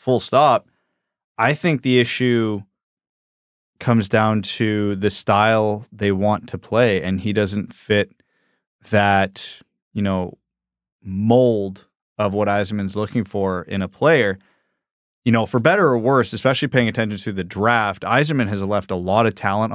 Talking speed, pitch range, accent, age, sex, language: 150 wpm, 100-120 Hz, American, 20-39, male, English